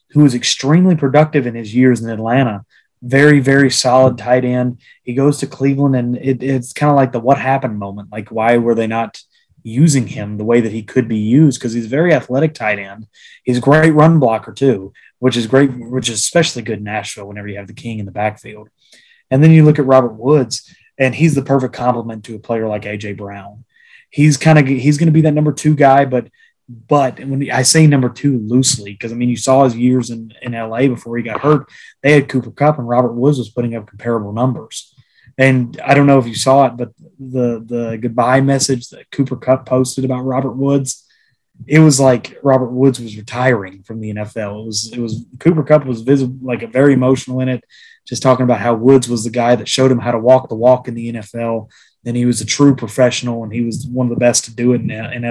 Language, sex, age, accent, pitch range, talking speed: English, male, 20-39, American, 115-135 Hz, 235 wpm